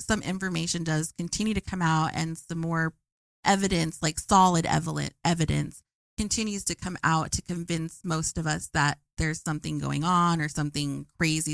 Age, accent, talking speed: 30-49, American, 160 wpm